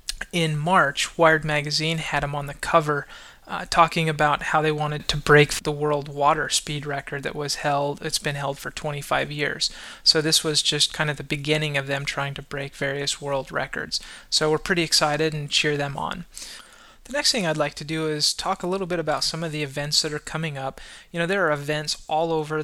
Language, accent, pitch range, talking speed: English, American, 145-160 Hz, 220 wpm